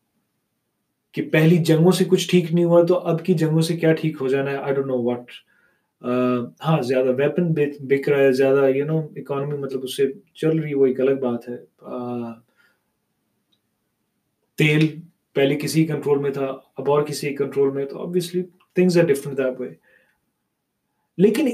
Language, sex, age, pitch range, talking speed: Urdu, male, 30-49, 135-175 Hz, 50 wpm